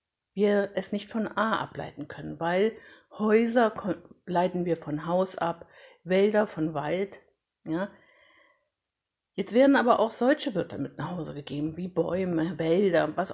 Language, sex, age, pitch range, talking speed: German, female, 50-69, 175-205 Hz, 140 wpm